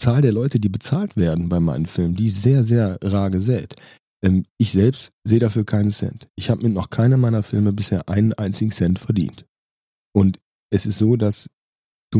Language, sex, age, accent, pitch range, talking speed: German, male, 30-49, German, 95-115 Hz, 185 wpm